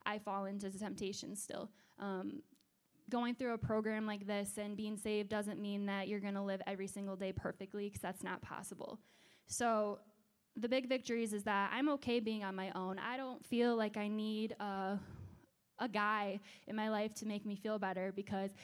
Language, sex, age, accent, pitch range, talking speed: English, female, 10-29, American, 205-245 Hz, 195 wpm